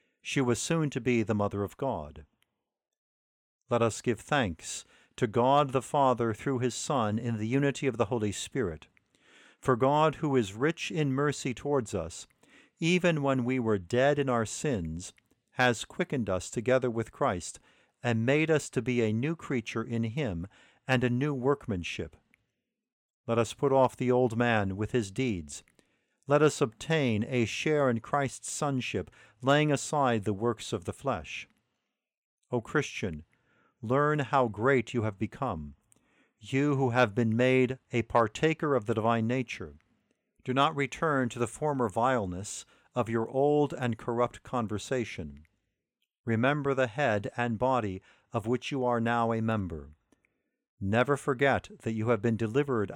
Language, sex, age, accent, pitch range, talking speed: English, male, 50-69, American, 110-140 Hz, 160 wpm